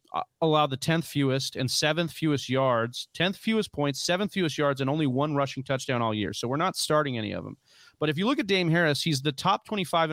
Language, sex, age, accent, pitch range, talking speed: English, male, 30-49, American, 135-175 Hz, 230 wpm